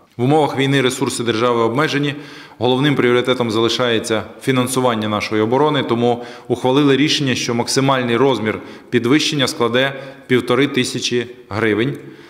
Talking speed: 110 wpm